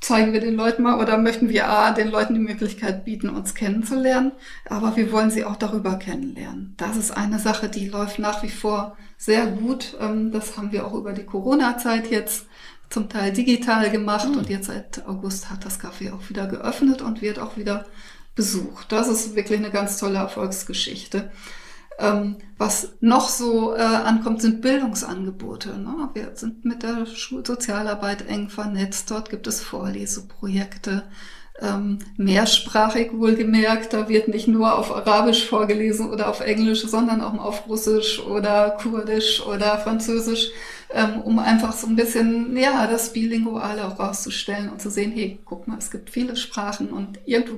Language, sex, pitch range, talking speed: German, female, 205-225 Hz, 160 wpm